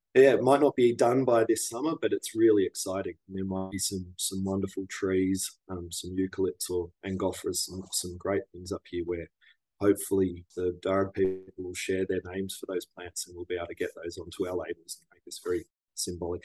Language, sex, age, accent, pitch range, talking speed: English, male, 20-39, Australian, 95-115 Hz, 210 wpm